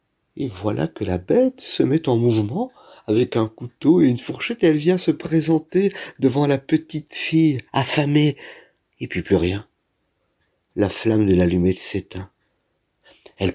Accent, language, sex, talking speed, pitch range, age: French, French, male, 155 wpm, 100-130 Hz, 50-69